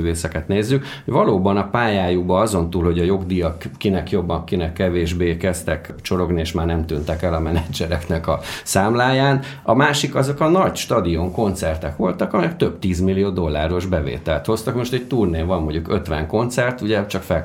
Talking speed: 165 wpm